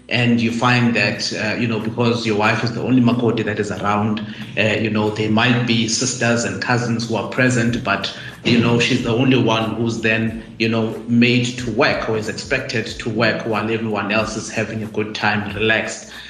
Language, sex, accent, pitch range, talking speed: English, male, South African, 110-120 Hz, 210 wpm